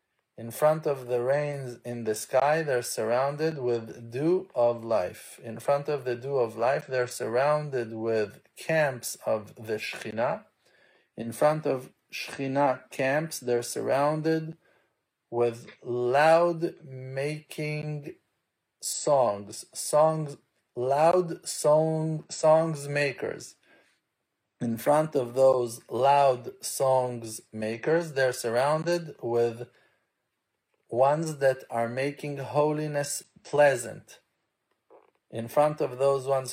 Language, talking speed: English, 105 wpm